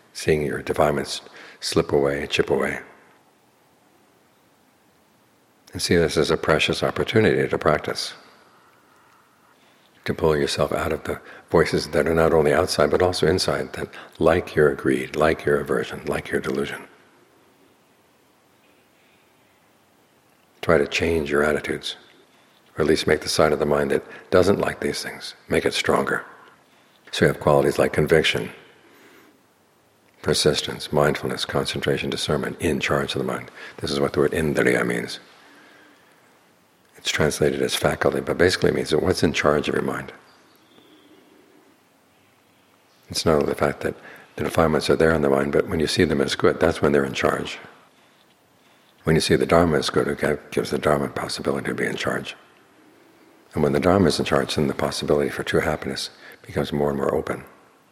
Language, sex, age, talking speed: English, male, 60-79, 165 wpm